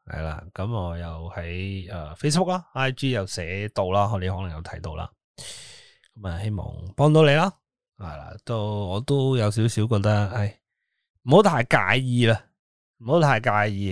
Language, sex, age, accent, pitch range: Chinese, male, 20-39, native, 95-135 Hz